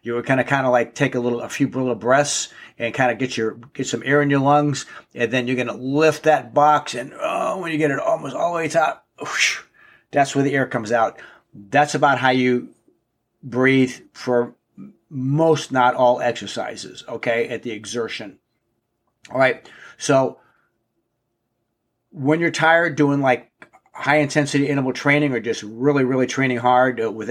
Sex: male